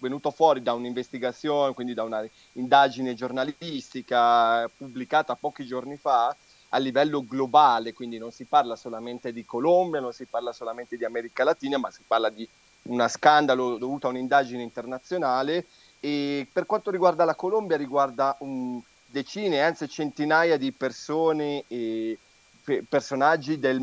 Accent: native